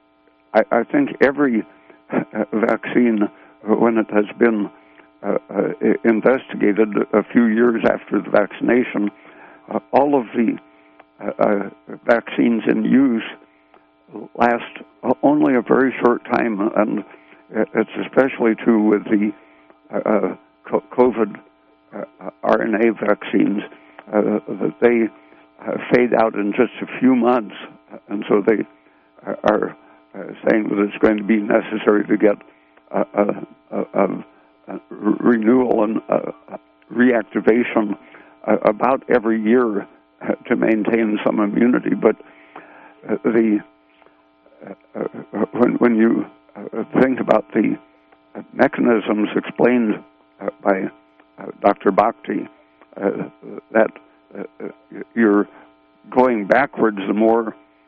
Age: 60-79